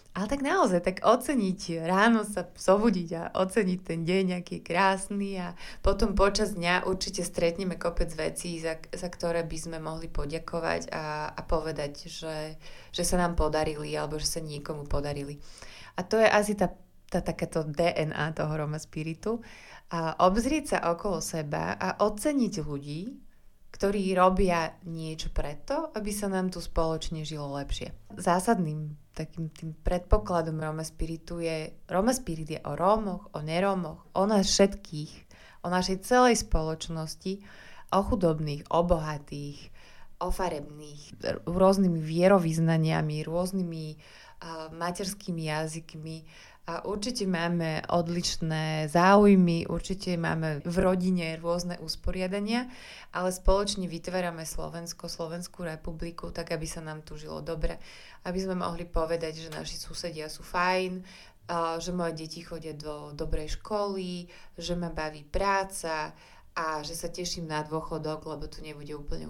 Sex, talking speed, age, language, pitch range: female, 140 wpm, 30-49, Slovak, 160-185 Hz